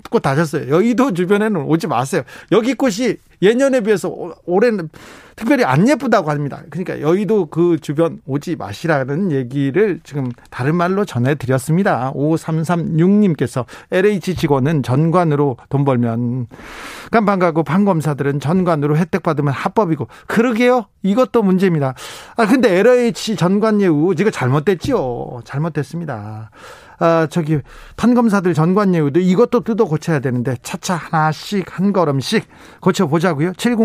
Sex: male